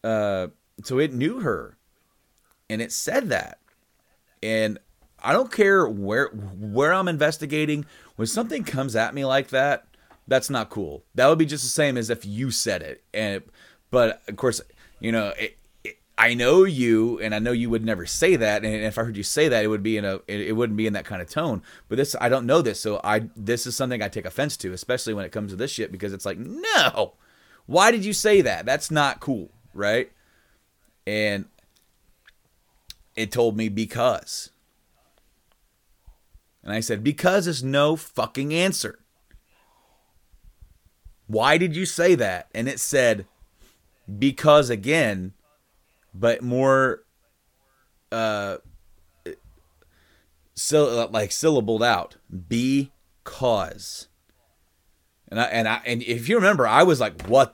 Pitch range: 100-140 Hz